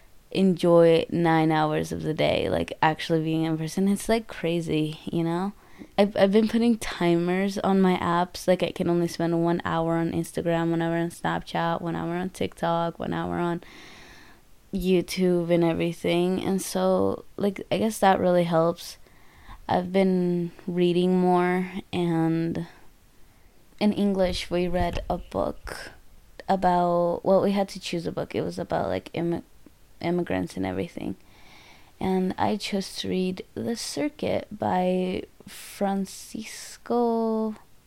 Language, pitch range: English, 165-190 Hz